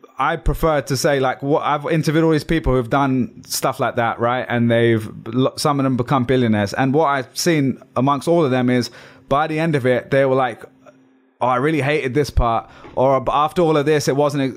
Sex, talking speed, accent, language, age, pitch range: male, 220 wpm, British, English, 20-39, 125-150 Hz